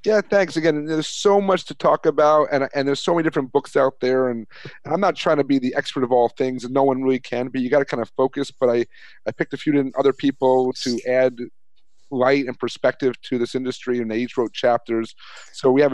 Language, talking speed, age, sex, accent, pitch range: English, 250 wpm, 40-59, male, American, 125-155 Hz